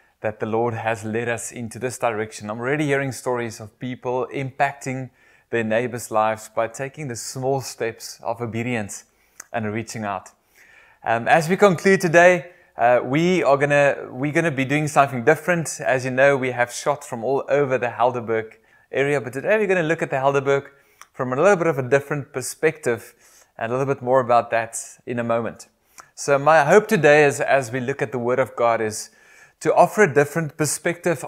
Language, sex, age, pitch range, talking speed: English, male, 20-39, 120-150 Hz, 195 wpm